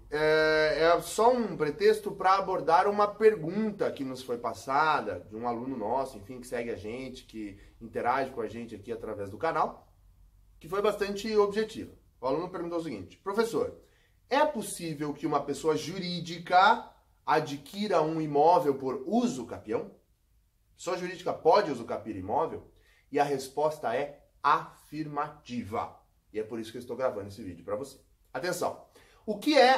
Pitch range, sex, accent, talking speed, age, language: 135-215 Hz, male, Brazilian, 165 wpm, 20-39, Portuguese